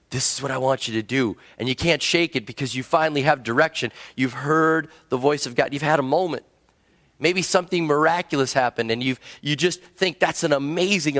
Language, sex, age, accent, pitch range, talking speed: English, male, 30-49, American, 130-175 Hz, 215 wpm